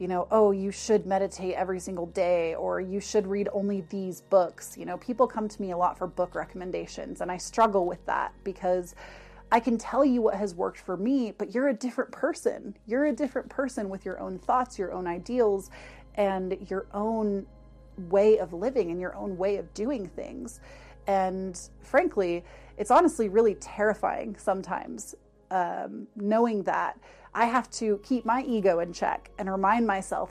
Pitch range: 185-220 Hz